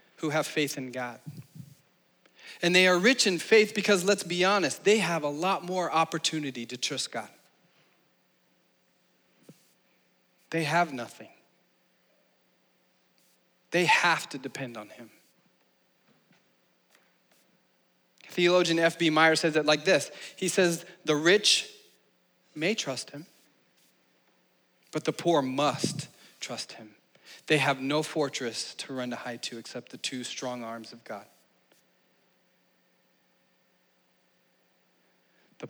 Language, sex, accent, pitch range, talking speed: English, male, American, 125-170 Hz, 120 wpm